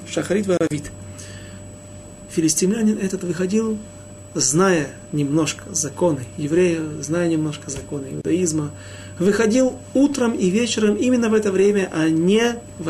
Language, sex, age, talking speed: Russian, male, 40-59, 110 wpm